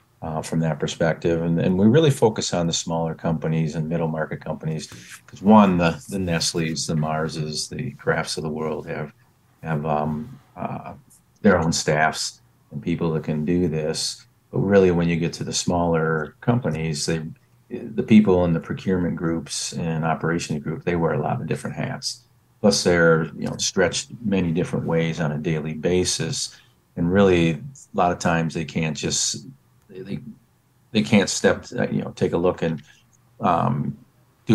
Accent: American